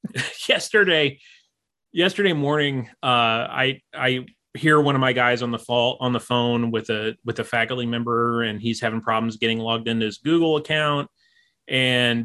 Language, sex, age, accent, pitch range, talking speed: English, male, 30-49, American, 125-165 Hz, 165 wpm